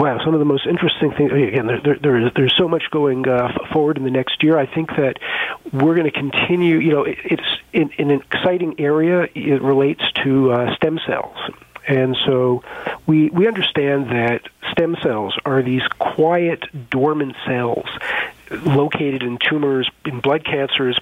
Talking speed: 185 wpm